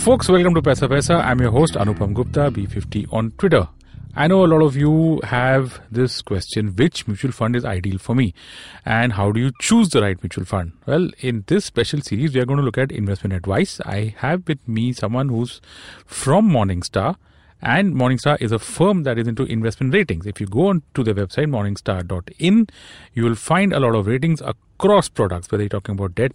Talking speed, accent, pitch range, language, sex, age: 210 wpm, Indian, 105-145 Hz, English, male, 40-59